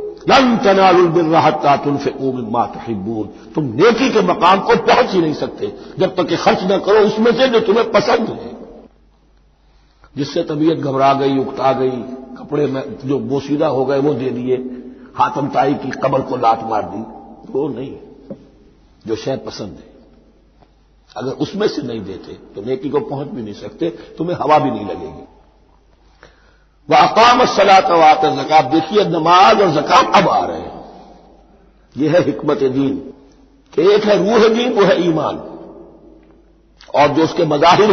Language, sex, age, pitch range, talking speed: Hindi, male, 50-69, 130-185 Hz, 170 wpm